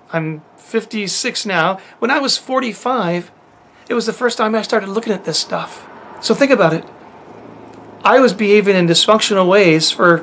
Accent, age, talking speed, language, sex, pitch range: American, 40-59, 170 wpm, English, male, 175-225 Hz